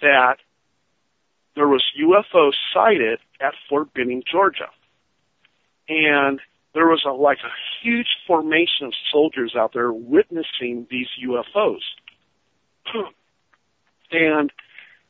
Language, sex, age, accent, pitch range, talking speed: English, male, 50-69, American, 135-175 Hz, 95 wpm